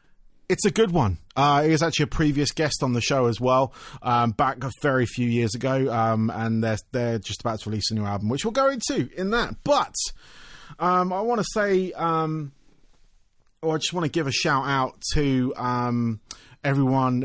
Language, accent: English, British